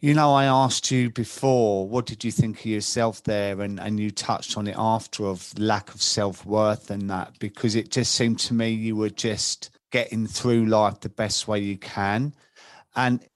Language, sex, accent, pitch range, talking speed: English, male, British, 105-120 Hz, 200 wpm